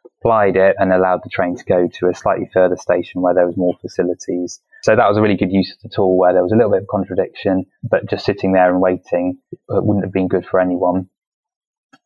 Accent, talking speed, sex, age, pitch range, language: British, 245 wpm, male, 20-39, 90-105 Hz, English